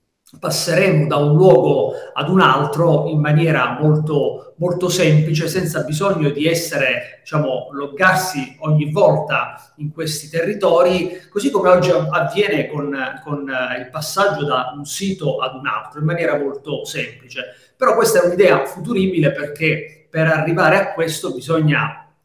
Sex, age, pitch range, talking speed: male, 30-49, 145-175 Hz, 140 wpm